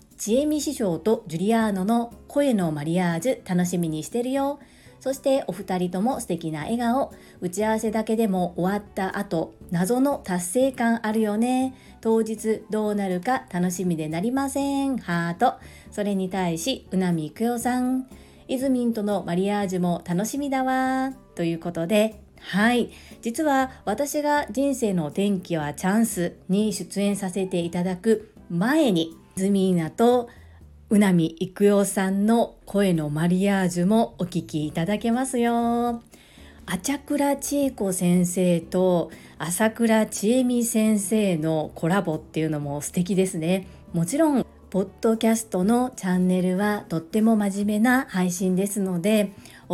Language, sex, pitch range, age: Japanese, female, 180-235 Hz, 40-59